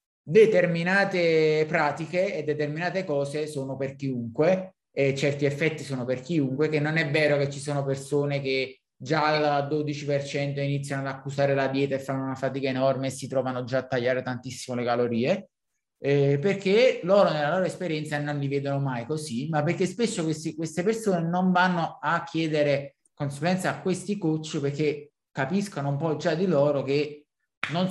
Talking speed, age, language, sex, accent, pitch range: 170 wpm, 20-39, Italian, male, native, 135-170 Hz